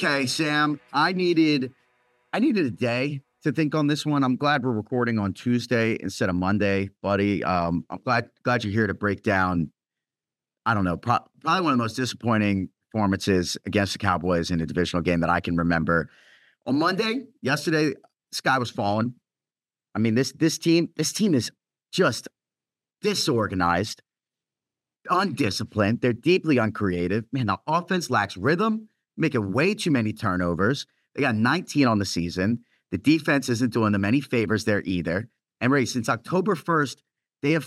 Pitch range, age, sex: 110-160 Hz, 30-49, male